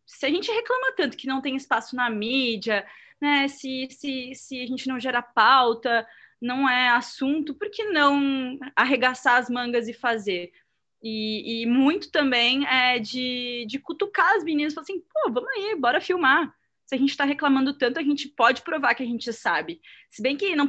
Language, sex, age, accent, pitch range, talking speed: Portuguese, female, 20-39, Brazilian, 220-280 Hz, 190 wpm